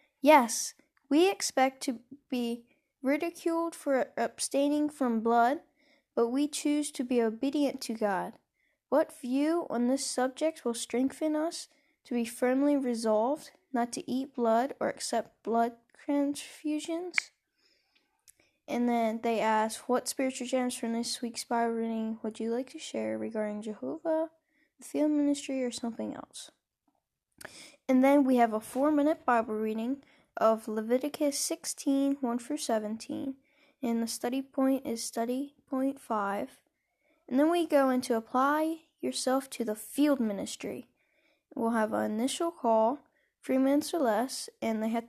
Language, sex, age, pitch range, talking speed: English, female, 10-29, 230-295 Hz, 145 wpm